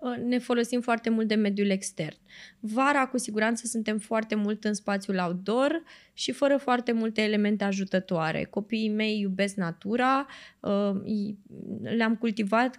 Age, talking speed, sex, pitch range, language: 20-39, 130 wpm, female, 185-230 Hz, Romanian